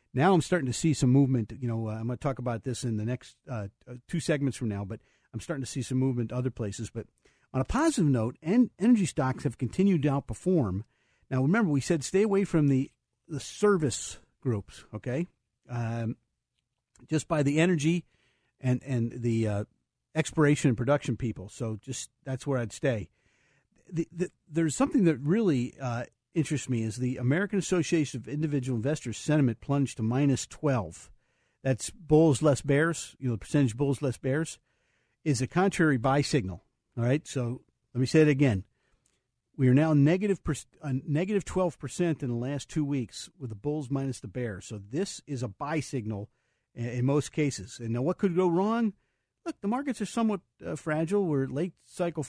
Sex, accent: male, American